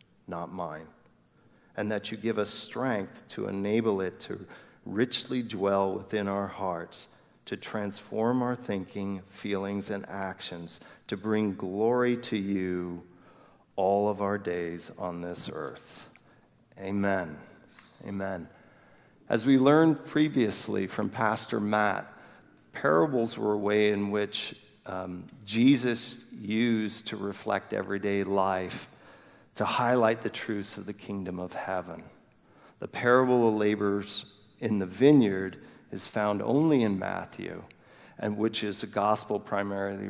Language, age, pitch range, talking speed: English, 40-59, 95-110 Hz, 125 wpm